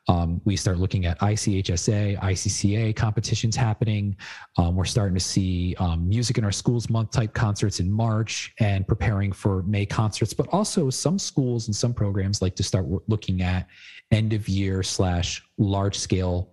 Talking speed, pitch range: 170 wpm, 95-115 Hz